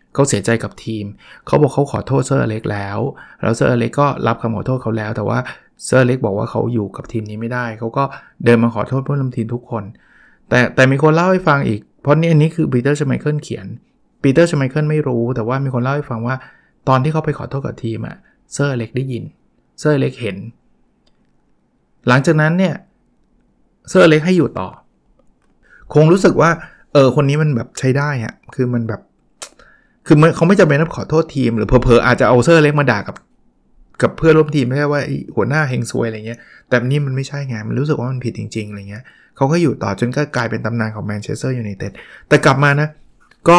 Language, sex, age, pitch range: Thai, male, 20-39, 115-145 Hz